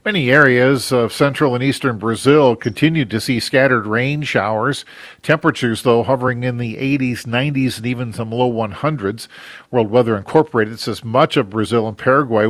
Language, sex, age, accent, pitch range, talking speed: English, male, 50-69, American, 115-140 Hz, 165 wpm